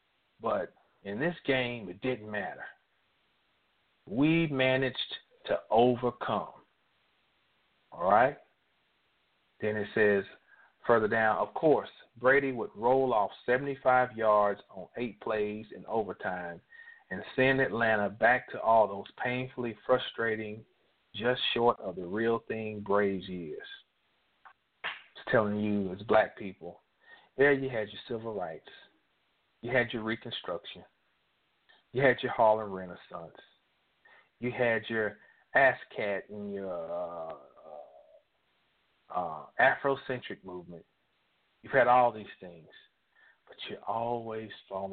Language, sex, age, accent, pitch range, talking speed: English, male, 40-59, American, 105-130 Hz, 120 wpm